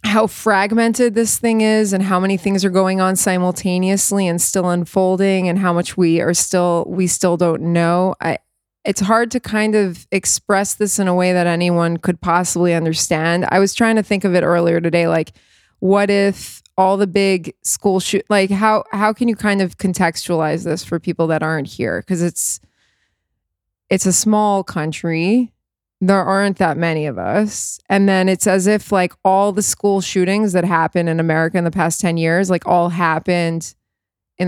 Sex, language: female, English